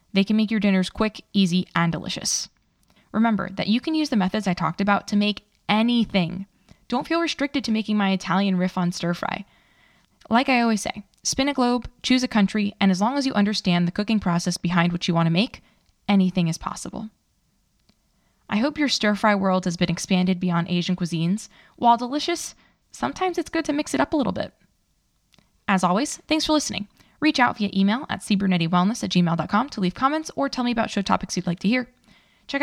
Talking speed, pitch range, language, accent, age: 200 wpm, 185-235 Hz, English, American, 20-39